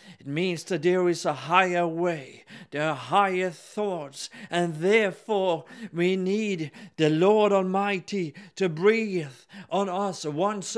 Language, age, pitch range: English, 50-69, 175-205 Hz